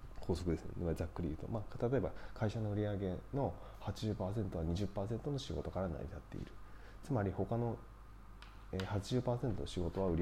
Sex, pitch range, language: male, 90-110 Hz, Japanese